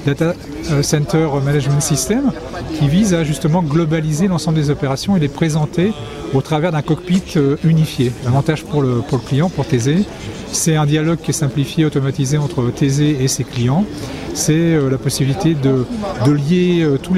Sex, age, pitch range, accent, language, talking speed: male, 40-59, 135-165 Hz, French, French, 170 wpm